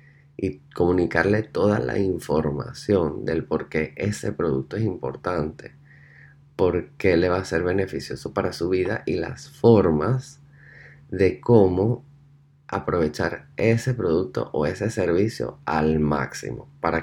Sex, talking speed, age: male, 125 wpm, 20-39